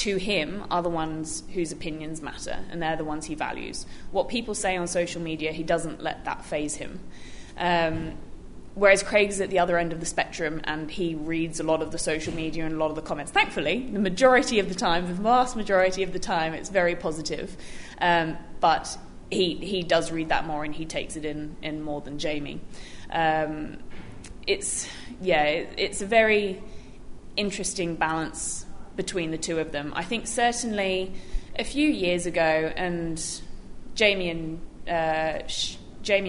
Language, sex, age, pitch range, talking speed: English, female, 20-39, 160-190 Hz, 190 wpm